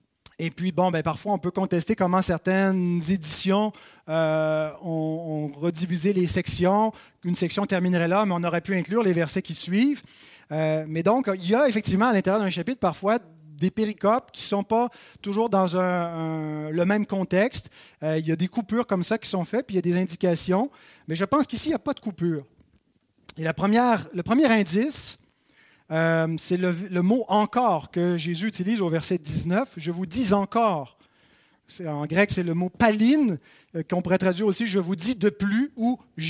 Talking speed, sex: 215 wpm, male